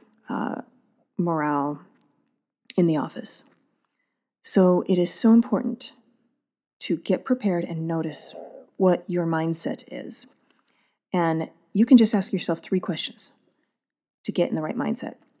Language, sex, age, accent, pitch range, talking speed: English, female, 30-49, American, 175-245 Hz, 130 wpm